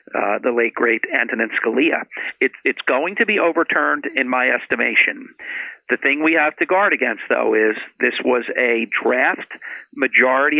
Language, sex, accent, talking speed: English, male, American, 165 wpm